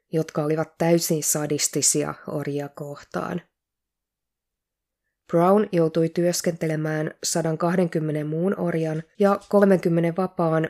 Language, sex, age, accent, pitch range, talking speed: Finnish, female, 20-39, native, 155-190 Hz, 85 wpm